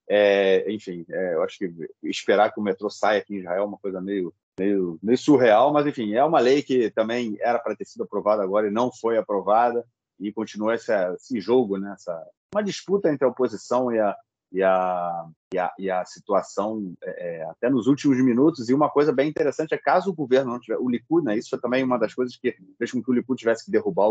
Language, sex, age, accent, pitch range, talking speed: Portuguese, male, 30-49, Brazilian, 100-135 Hz, 230 wpm